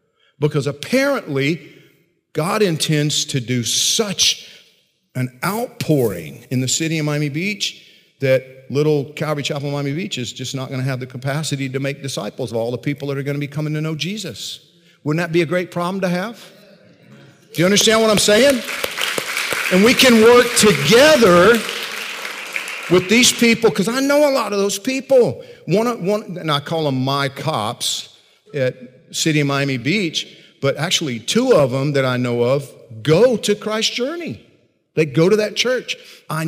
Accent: American